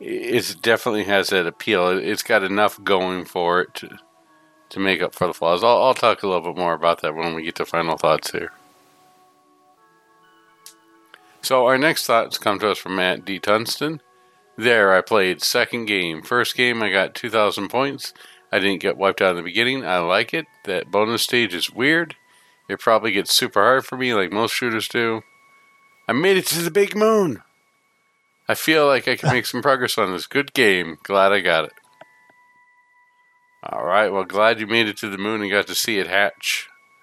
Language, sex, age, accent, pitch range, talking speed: English, male, 50-69, American, 100-150 Hz, 200 wpm